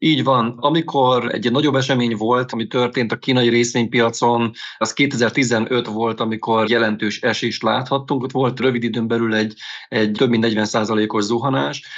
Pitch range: 110-125 Hz